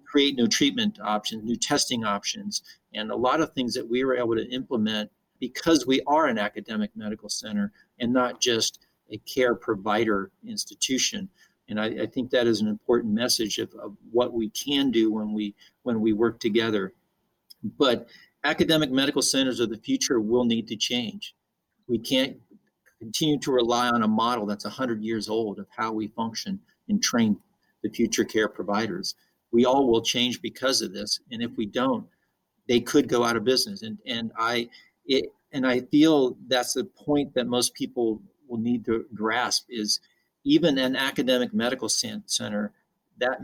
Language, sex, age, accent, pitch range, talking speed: English, male, 50-69, American, 115-140 Hz, 175 wpm